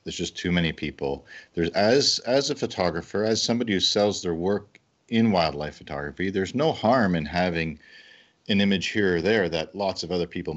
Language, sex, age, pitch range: English, male, 40-59, 80-100 Hz